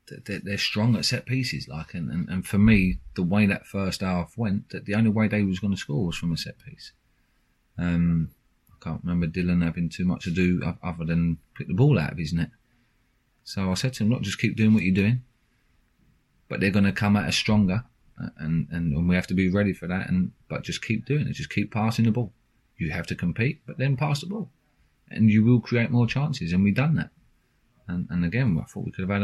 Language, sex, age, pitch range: English, male, 30-49, 90-120 Hz